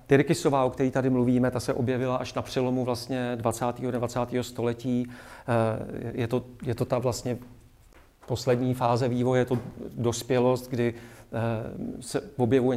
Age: 40-59